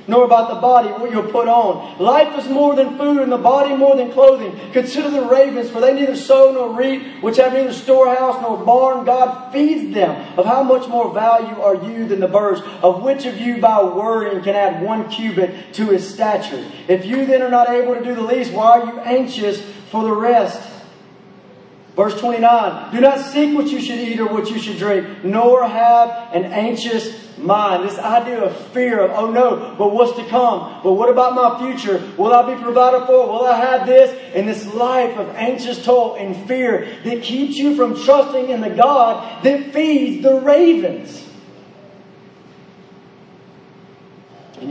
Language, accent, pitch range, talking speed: English, American, 210-255 Hz, 190 wpm